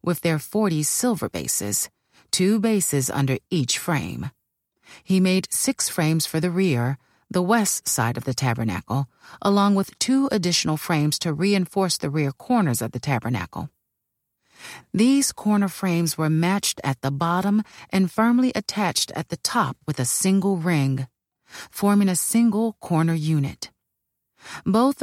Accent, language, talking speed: American, English, 145 wpm